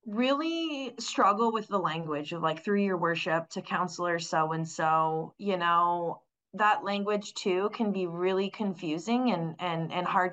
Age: 20-39